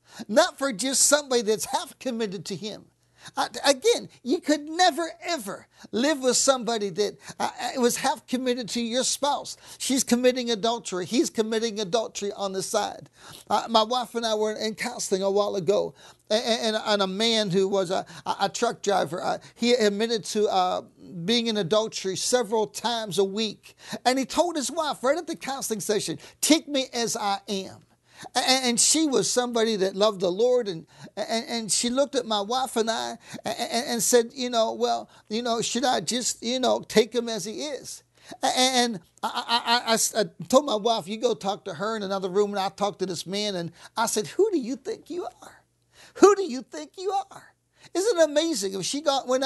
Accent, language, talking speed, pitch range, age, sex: American, English, 200 wpm, 210-270 Hz, 50-69, male